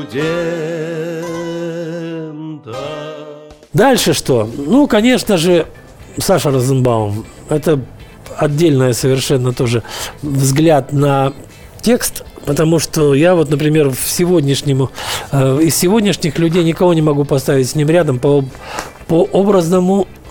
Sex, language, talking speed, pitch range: male, Russian, 100 wpm, 140-180 Hz